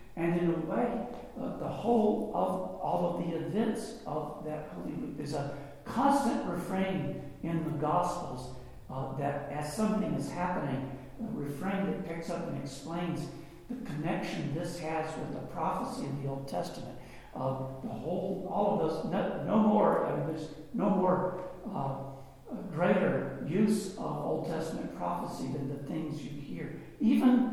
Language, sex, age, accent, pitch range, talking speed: English, male, 60-79, American, 140-180 Hz, 155 wpm